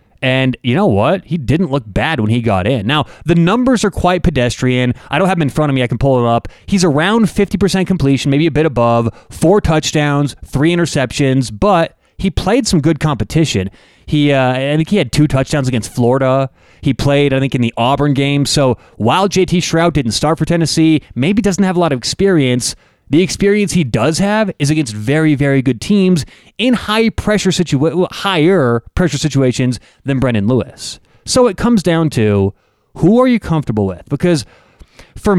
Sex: male